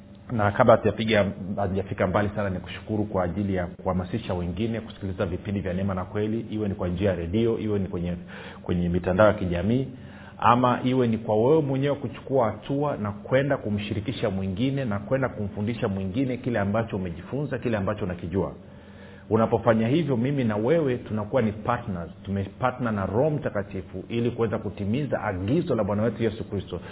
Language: Swahili